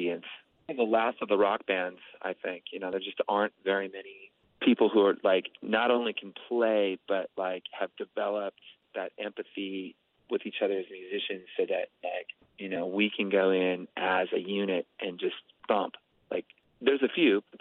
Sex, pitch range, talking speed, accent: male, 95-150 Hz, 180 wpm, American